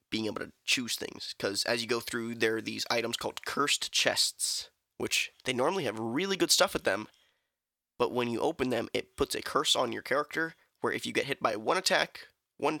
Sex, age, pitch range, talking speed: male, 20-39, 120-150 Hz, 220 wpm